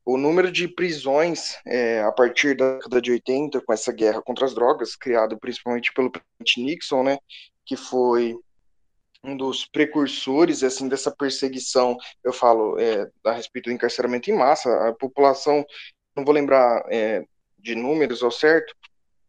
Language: Portuguese